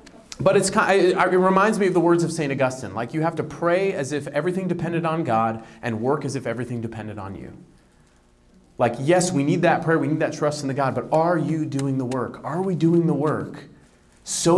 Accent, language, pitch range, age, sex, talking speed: American, English, 120-175 Hz, 30-49, male, 220 wpm